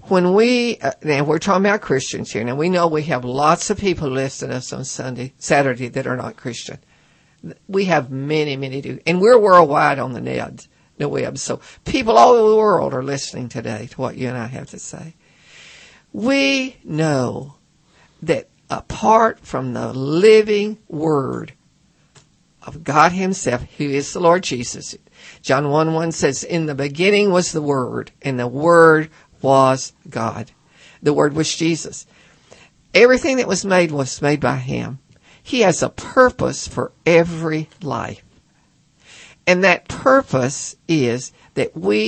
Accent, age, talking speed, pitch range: American, 60-79, 160 wpm, 135-185 Hz